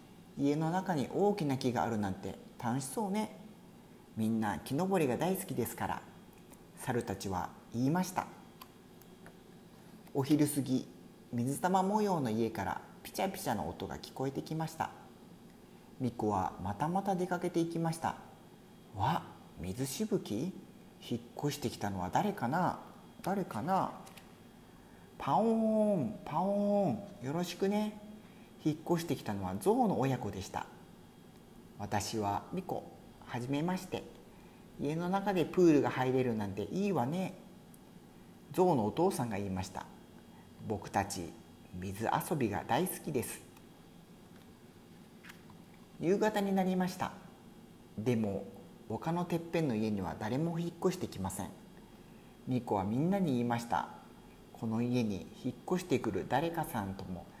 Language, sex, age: Spanish, male, 50-69